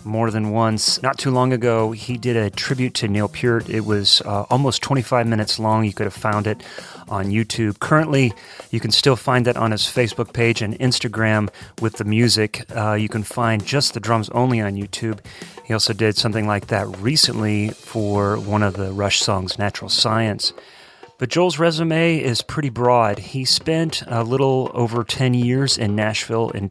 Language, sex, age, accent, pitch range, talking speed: English, male, 30-49, American, 105-125 Hz, 190 wpm